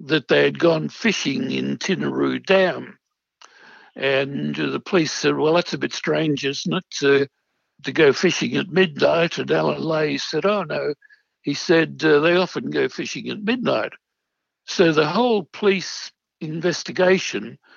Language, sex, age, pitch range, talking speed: English, male, 60-79, 145-205 Hz, 150 wpm